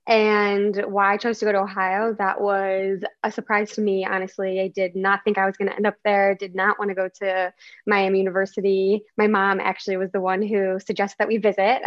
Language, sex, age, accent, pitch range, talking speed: English, female, 10-29, American, 190-210 Hz, 230 wpm